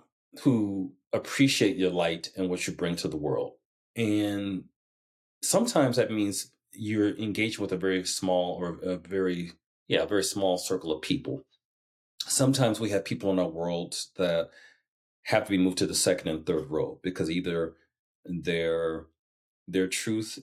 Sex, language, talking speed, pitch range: male, English, 160 wpm, 85-95 Hz